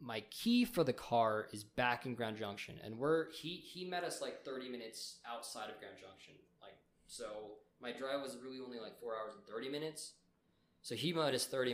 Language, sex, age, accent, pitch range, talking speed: English, male, 20-39, American, 105-140 Hz, 210 wpm